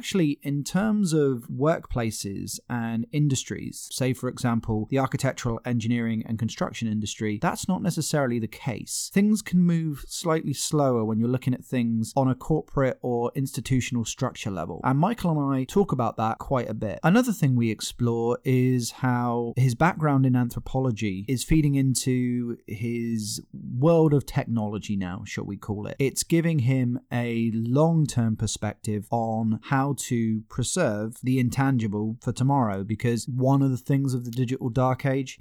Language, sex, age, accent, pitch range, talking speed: English, male, 30-49, British, 115-140 Hz, 160 wpm